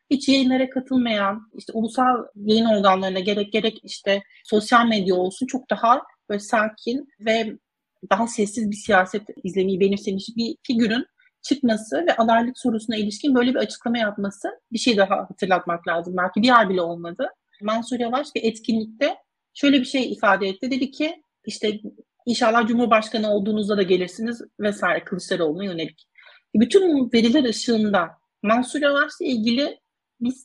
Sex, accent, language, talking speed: female, native, Turkish, 140 wpm